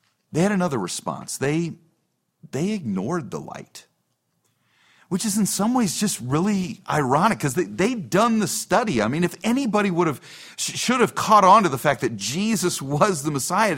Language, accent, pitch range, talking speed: English, American, 135-190 Hz, 175 wpm